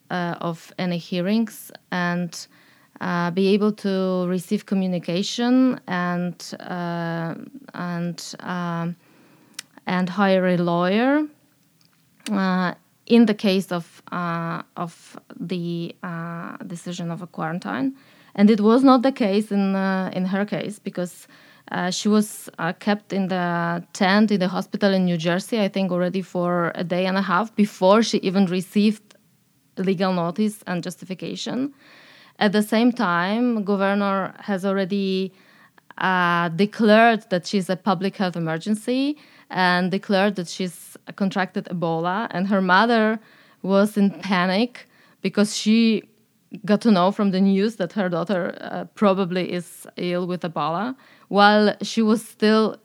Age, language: 20-39, English